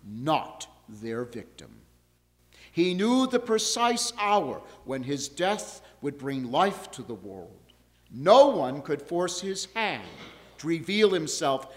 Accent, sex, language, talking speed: American, male, English, 135 wpm